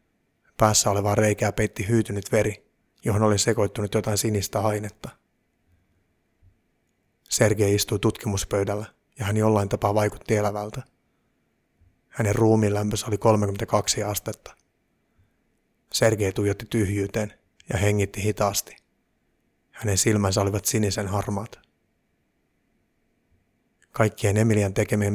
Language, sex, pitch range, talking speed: Finnish, male, 100-110 Hz, 100 wpm